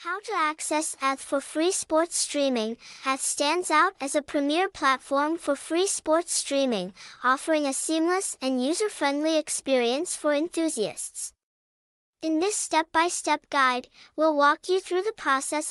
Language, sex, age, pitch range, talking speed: English, male, 10-29, 270-330 Hz, 140 wpm